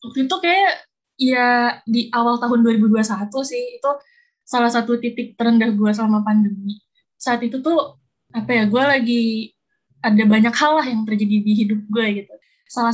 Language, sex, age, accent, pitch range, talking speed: Indonesian, female, 10-29, native, 225-275 Hz, 160 wpm